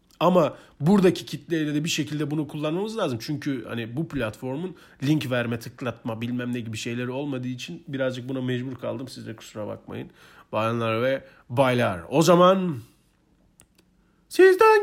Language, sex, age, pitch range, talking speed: Turkish, male, 40-59, 110-165 Hz, 145 wpm